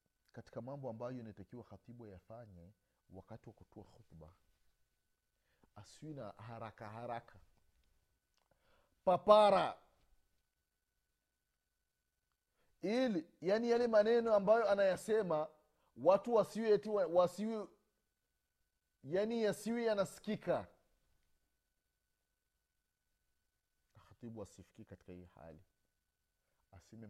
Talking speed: 75 wpm